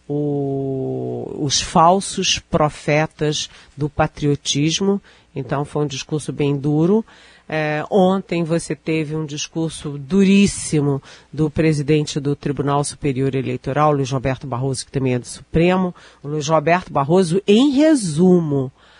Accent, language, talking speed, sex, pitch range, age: Brazilian, Portuguese, 115 wpm, female, 140-175 Hz, 50-69